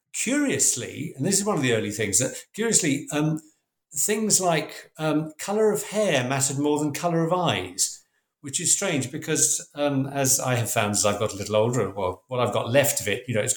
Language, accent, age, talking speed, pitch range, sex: English, British, 50-69, 215 wpm, 130-160 Hz, male